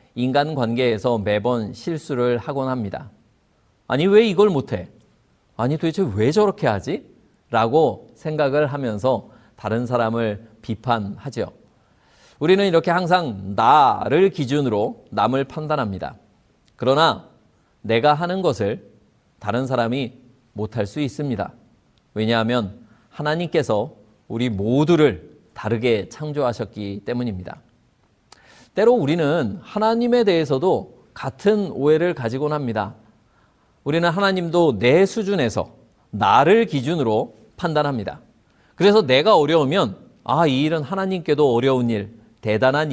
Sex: male